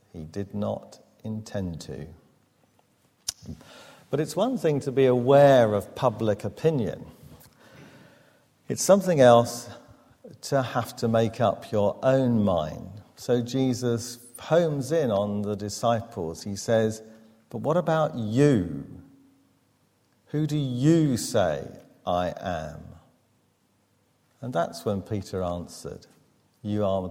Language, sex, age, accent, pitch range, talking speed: English, male, 50-69, British, 95-125 Hz, 115 wpm